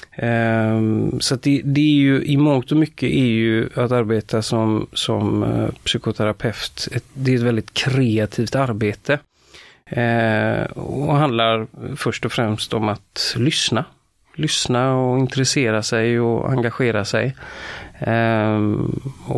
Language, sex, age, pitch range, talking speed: Swedish, male, 30-49, 110-135 Hz, 130 wpm